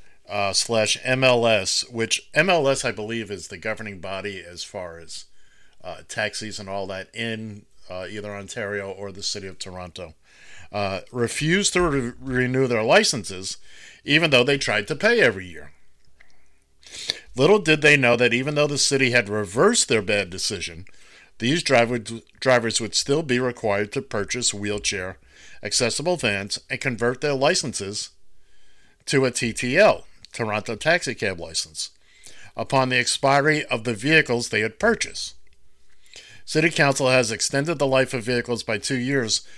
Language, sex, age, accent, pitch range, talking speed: English, male, 50-69, American, 100-135 Hz, 145 wpm